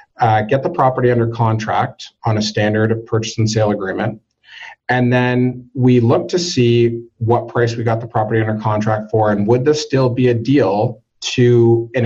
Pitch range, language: 105-125 Hz, English